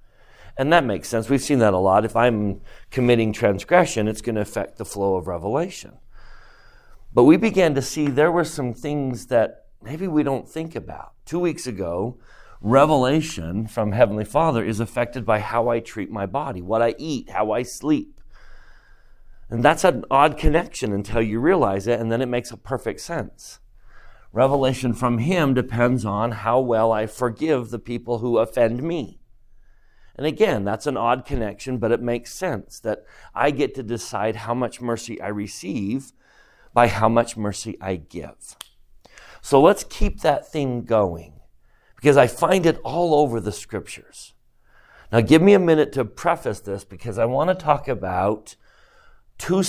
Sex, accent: male, American